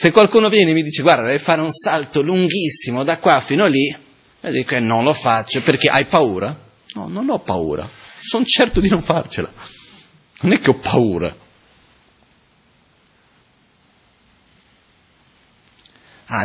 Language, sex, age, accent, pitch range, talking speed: Italian, male, 30-49, native, 105-150 Hz, 145 wpm